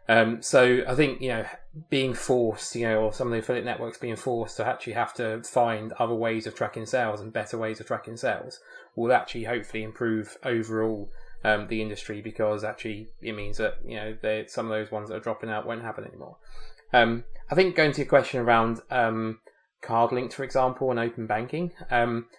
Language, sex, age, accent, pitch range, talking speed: English, male, 20-39, British, 110-120 Hz, 205 wpm